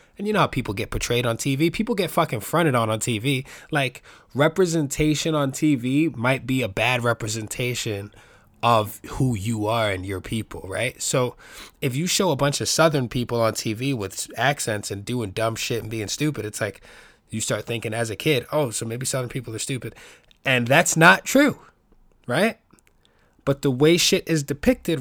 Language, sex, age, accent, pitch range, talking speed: English, male, 20-39, American, 115-160 Hz, 190 wpm